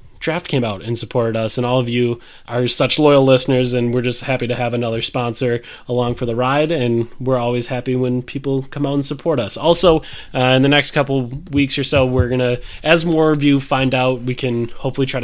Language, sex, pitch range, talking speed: English, male, 120-140 Hz, 230 wpm